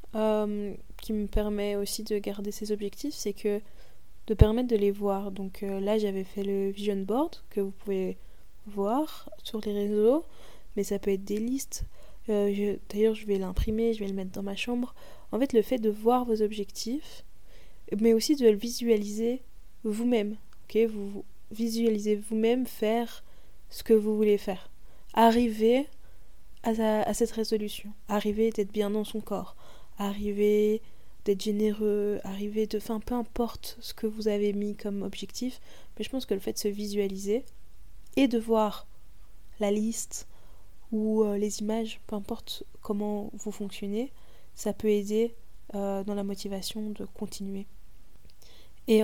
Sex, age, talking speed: female, 20-39, 165 wpm